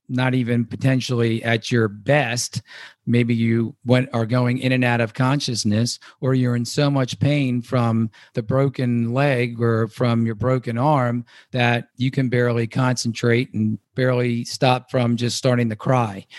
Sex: male